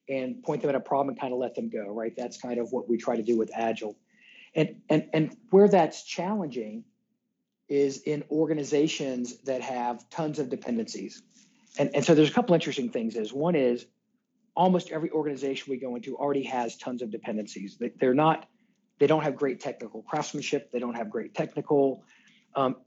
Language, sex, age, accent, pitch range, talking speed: English, male, 40-59, American, 125-165 Hz, 195 wpm